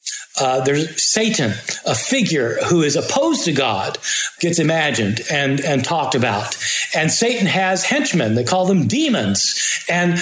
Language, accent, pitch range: English, American, 155-210 Hz